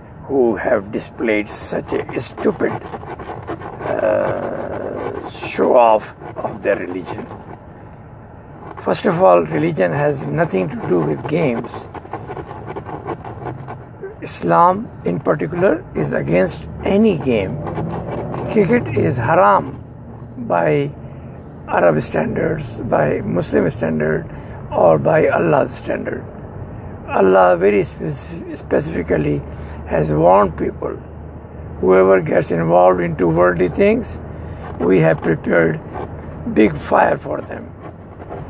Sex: male